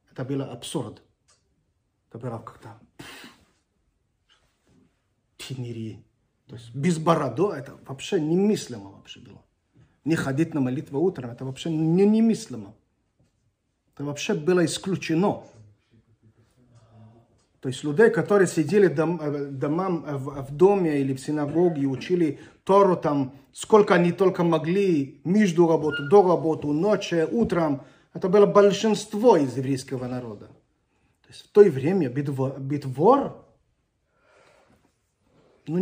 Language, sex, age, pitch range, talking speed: Russian, male, 40-59, 125-180 Hz, 110 wpm